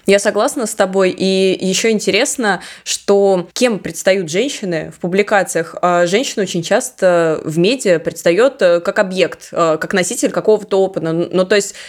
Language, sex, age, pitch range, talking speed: Russian, female, 20-39, 180-215 Hz, 140 wpm